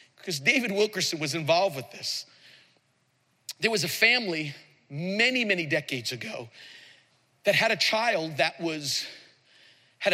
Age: 40-59